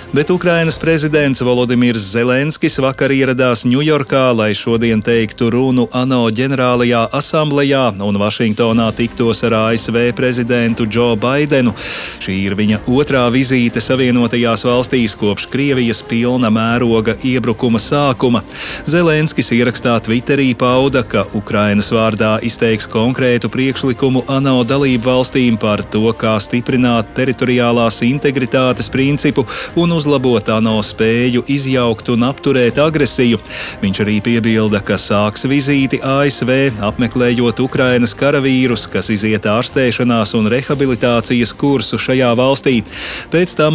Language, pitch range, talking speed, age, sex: English, 115-135 Hz, 115 wpm, 30-49, male